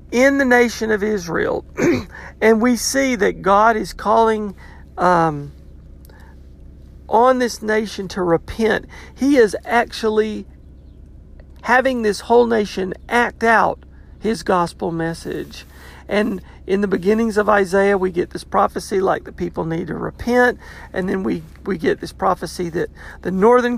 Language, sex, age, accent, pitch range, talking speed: English, male, 50-69, American, 180-230 Hz, 140 wpm